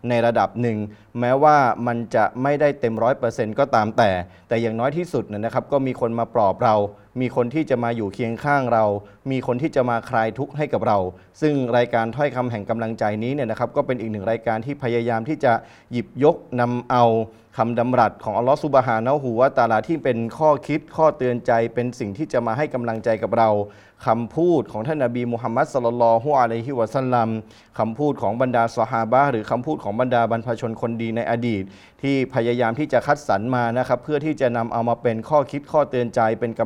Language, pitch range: Thai, 115-135 Hz